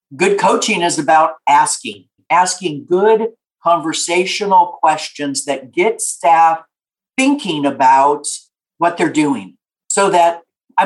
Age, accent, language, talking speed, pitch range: 50-69, American, English, 110 wpm, 170-245 Hz